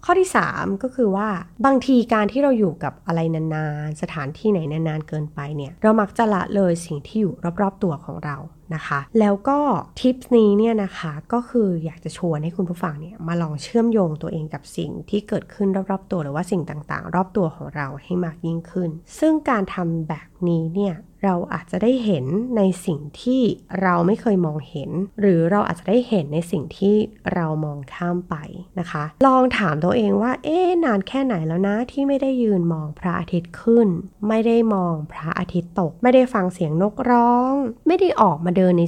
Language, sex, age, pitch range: Thai, female, 30-49, 165-215 Hz